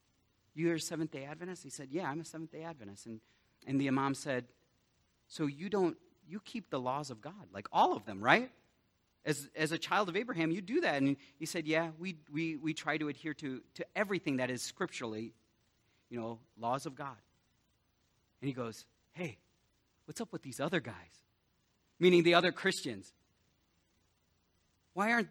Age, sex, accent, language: 40-59, male, American, English